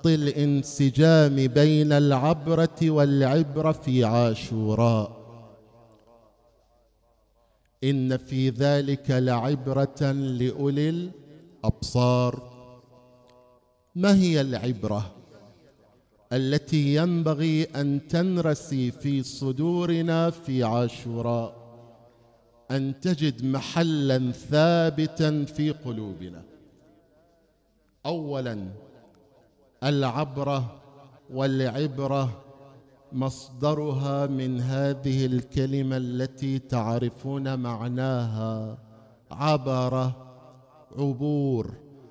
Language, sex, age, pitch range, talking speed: Arabic, male, 50-69, 125-150 Hz, 60 wpm